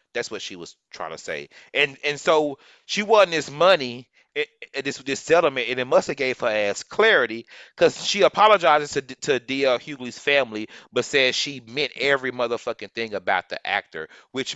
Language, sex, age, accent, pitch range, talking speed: English, male, 30-49, American, 105-135 Hz, 190 wpm